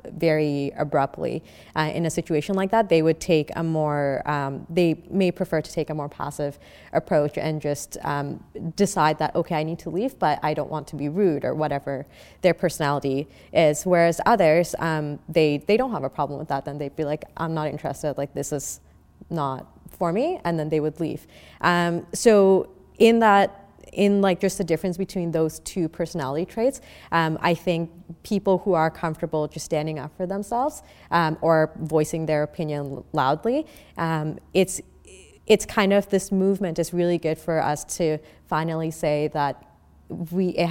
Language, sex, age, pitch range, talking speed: English, female, 20-39, 150-180 Hz, 185 wpm